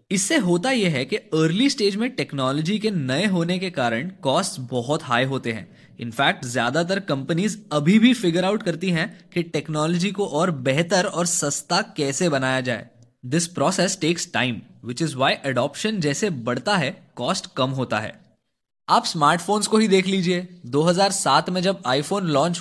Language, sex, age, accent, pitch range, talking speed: Hindi, male, 20-39, native, 140-190 Hz, 170 wpm